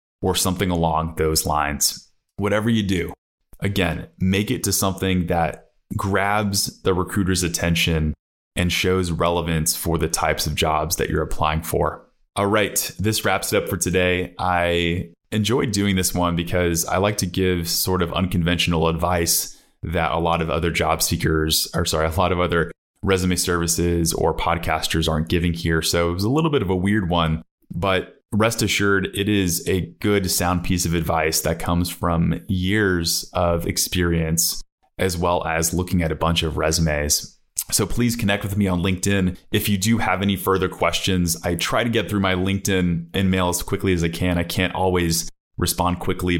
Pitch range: 85-95 Hz